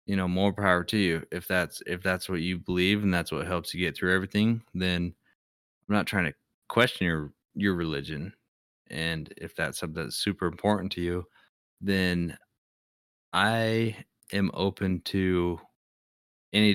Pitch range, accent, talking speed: 80-95 Hz, American, 160 wpm